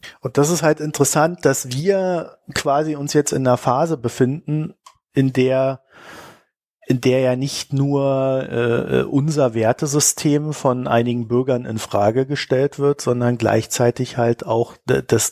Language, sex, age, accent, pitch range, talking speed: German, male, 50-69, German, 115-140 Hz, 140 wpm